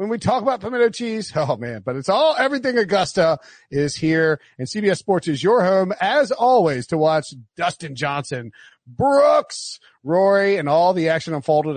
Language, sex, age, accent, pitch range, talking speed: English, male, 40-59, American, 145-205 Hz, 175 wpm